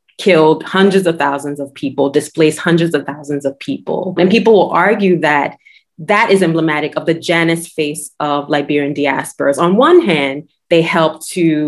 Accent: American